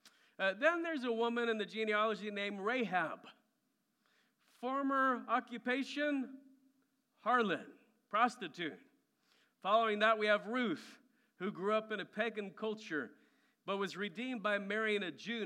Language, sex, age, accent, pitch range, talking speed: English, male, 50-69, American, 195-255 Hz, 130 wpm